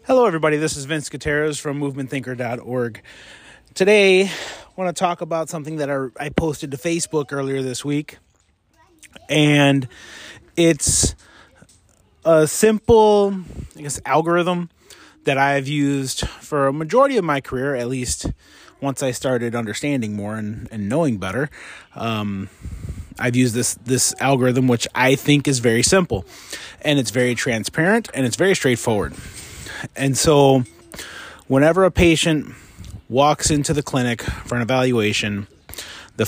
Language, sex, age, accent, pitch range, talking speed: English, male, 30-49, American, 120-155 Hz, 135 wpm